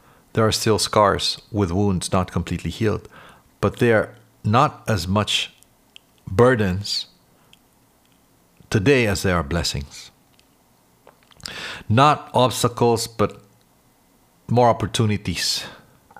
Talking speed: 95 wpm